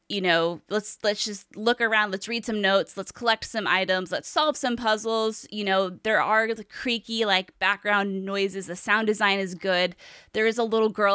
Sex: female